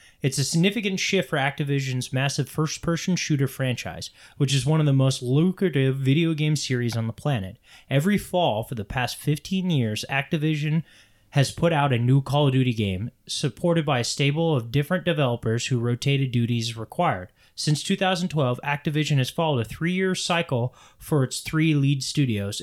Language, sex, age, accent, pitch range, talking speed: English, male, 20-39, American, 125-165 Hz, 170 wpm